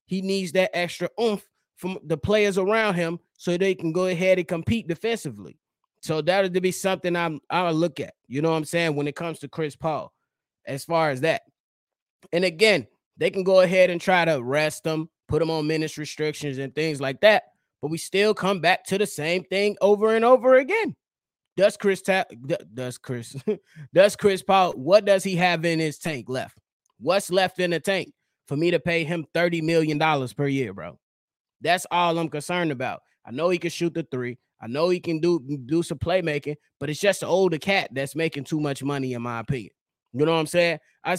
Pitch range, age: 155-190 Hz, 20-39